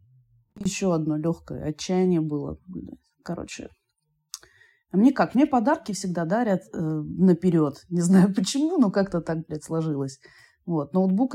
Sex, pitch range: female, 150-190 Hz